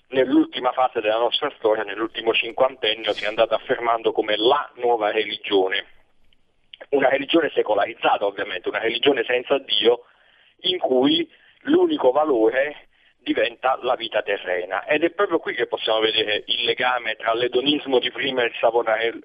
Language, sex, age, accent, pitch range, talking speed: Italian, male, 40-59, native, 110-165 Hz, 145 wpm